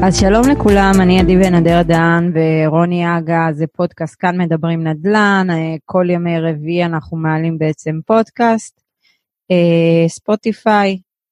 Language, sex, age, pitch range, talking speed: Hebrew, female, 30-49, 165-200 Hz, 120 wpm